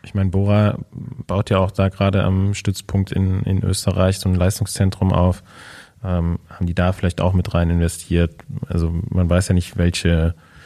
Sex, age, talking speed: male, 20-39, 180 wpm